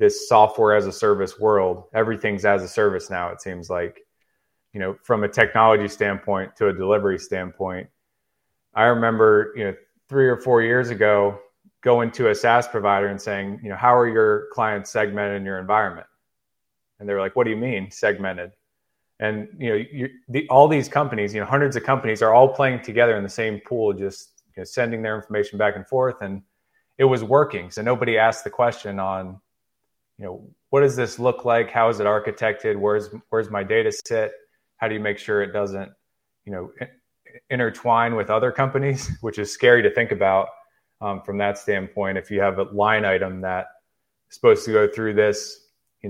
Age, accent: 20-39, American